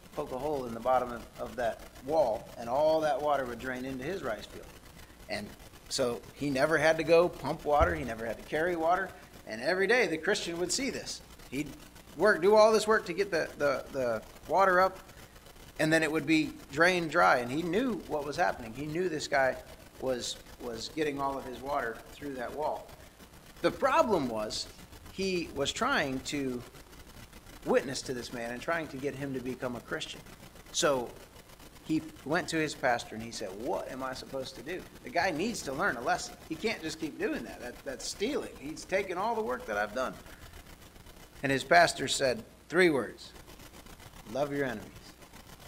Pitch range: 130-170 Hz